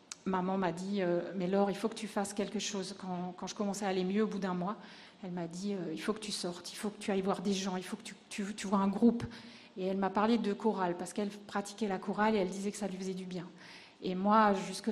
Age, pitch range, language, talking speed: 40-59, 190-215 Hz, French, 295 wpm